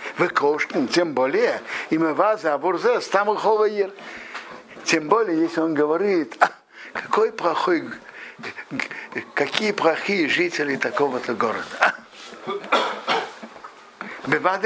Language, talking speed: Russian, 70 wpm